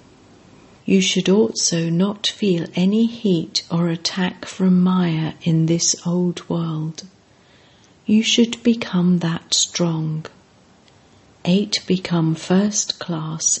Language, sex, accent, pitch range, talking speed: English, female, British, 165-195 Hz, 105 wpm